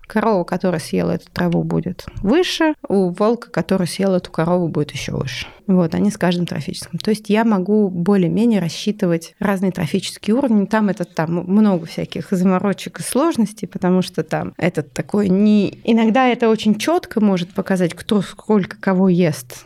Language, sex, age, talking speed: Russian, female, 20-39, 165 wpm